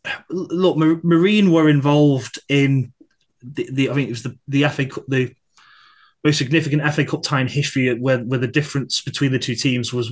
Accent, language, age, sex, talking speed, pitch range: British, English, 30-49, male, 190 wpm, 125-150 Hz